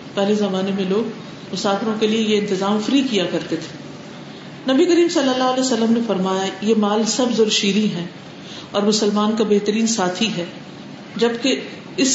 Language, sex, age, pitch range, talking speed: Urdu, female, 50-69, 195-250 Hz, 170 wpm